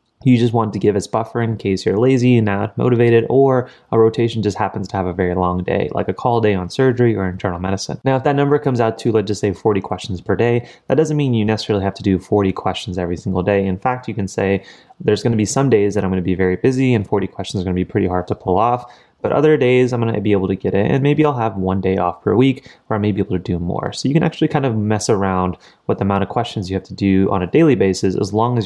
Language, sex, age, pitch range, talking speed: English, male, 20-39, 95-125 Hz, 300 wpm